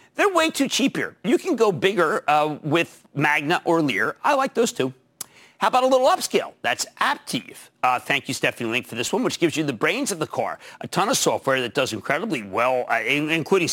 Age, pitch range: 50-69, 145-220 Hz